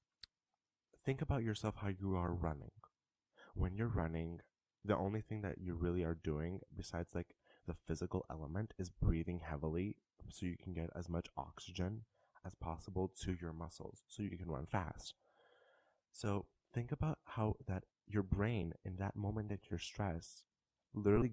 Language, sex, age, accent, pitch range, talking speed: English, male, 20-39, American, 85-105 Hz, 160 wpm